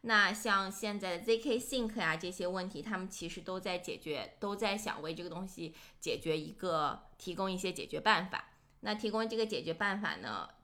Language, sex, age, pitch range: Chinese, female, 20-39, 170-215 Hz